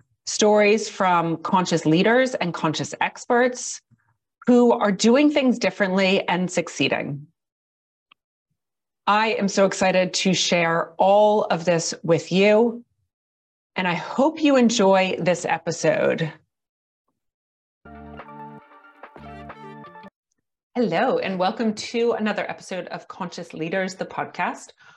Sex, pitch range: female, 170-230 Hz